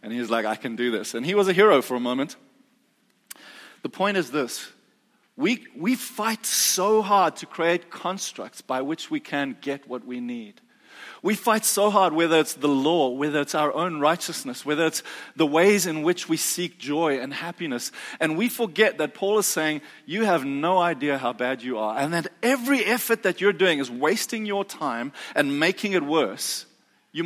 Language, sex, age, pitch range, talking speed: English, male, 30-49, 145-215 Hz, 200 wpm